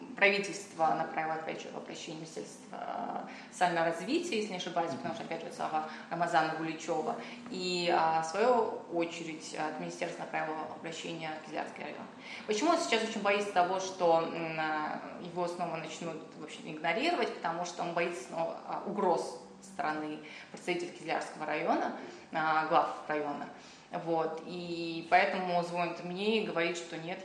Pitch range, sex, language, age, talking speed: 165-195 Hz, female, Russian, 20-39, 140 wpm